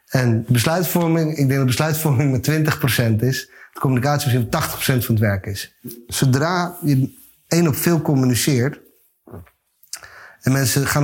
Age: 30-49